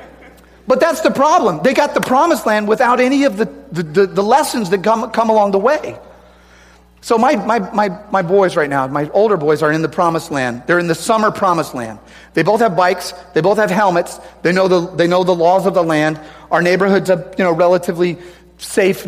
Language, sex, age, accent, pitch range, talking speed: English, male, 40-59, American, 160-215 Hz, 220 wpm